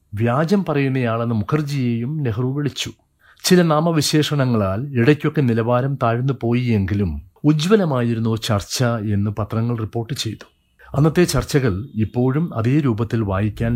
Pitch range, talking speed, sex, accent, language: 110-150 Hz, 95 wpm, male, native, Malayalam